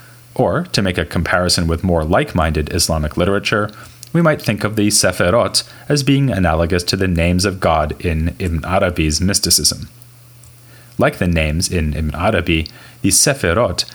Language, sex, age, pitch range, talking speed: English, male, 30-49, 90-120 Hz, 155 wpm